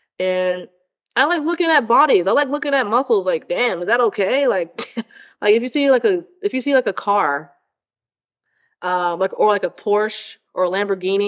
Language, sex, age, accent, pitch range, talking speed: English, female, 20-39, American, 180-240 Hz, 200 wpm